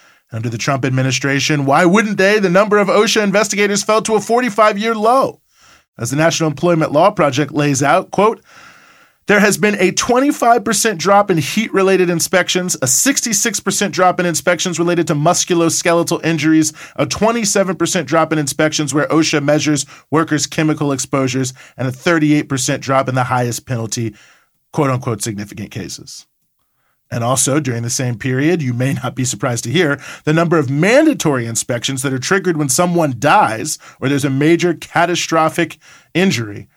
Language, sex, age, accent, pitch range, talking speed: English, male, 40-59, American, 140-180 Hz, 155 wpm